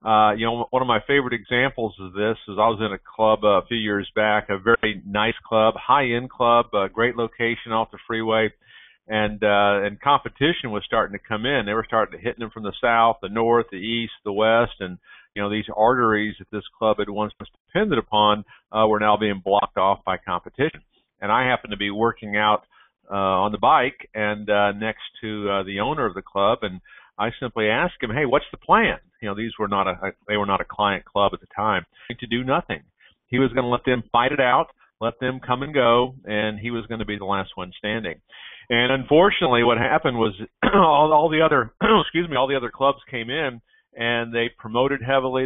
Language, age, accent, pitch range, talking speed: English, 50-69, American, 105-125 Hz, 220 wpm